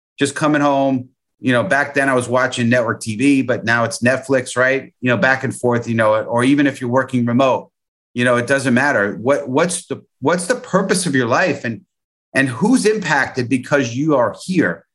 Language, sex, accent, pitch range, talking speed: English, male, American, 125-150 Hz, 210 wpm